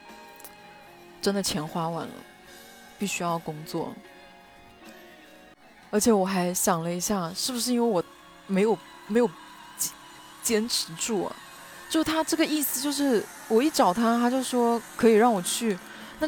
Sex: female